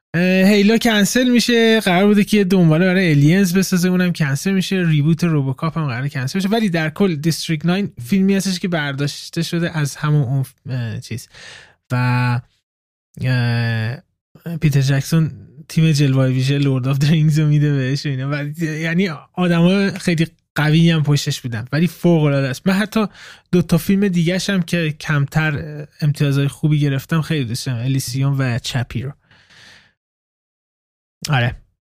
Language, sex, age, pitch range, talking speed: Persian, male, 20-39, 130-175 Hz, 150 wpm